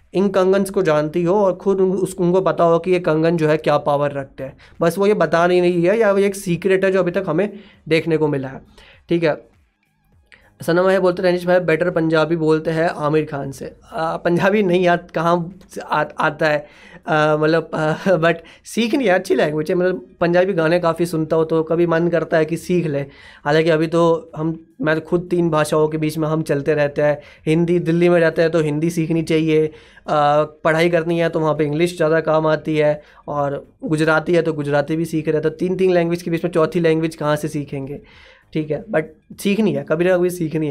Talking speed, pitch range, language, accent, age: 225 wpm, 155-175 Hz, Hindi, native, 20-39